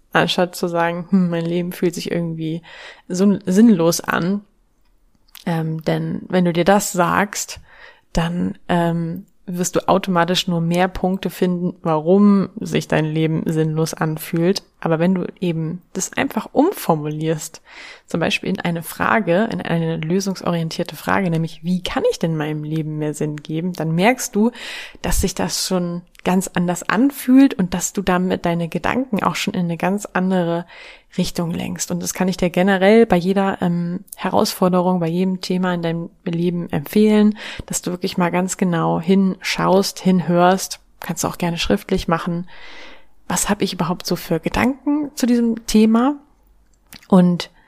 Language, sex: German, female